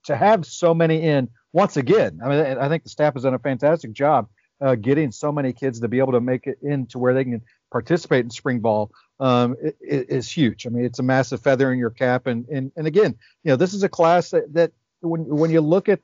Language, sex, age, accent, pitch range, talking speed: English, male, 50-69, American, 125-155 Hz, 250 wpm